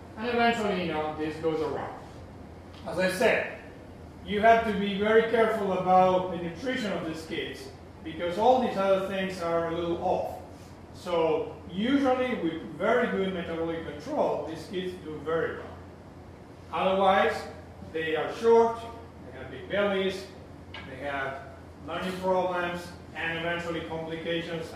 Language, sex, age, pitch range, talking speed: English, male, 40-59, 130-190 Hz, 140 wpm